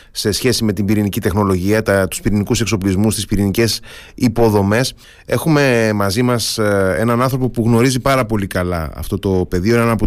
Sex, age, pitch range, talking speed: male, 30-49, 95-115 Hz, 165 wpm